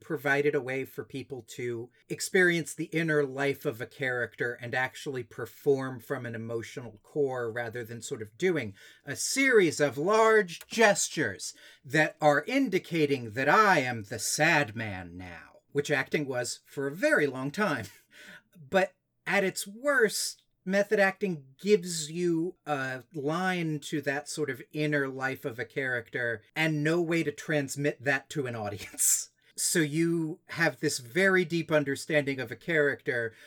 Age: 40-59